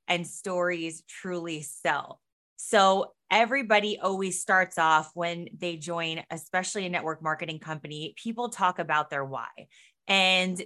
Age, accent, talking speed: 20-39, American, 130 wpm